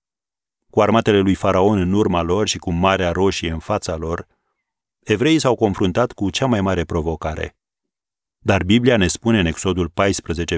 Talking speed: 165 wpm